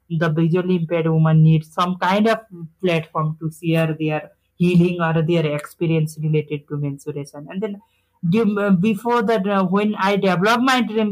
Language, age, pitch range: English, 30-49, 160-185 Hz